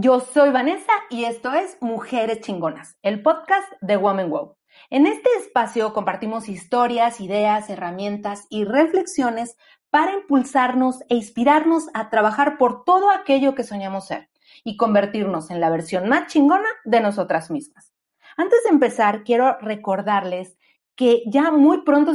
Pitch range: 215-270 Hz